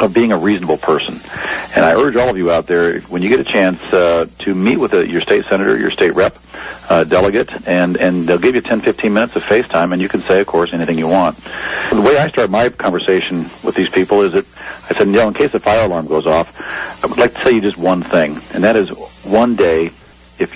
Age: 50-69